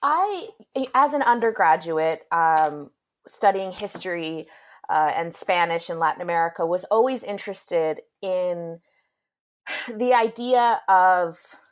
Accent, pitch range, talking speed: American, 175-235 Hz, 100 wpm